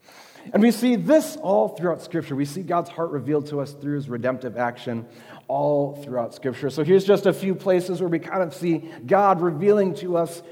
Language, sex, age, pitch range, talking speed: English, male, 30-49, 150-200 Hz, 205 wpm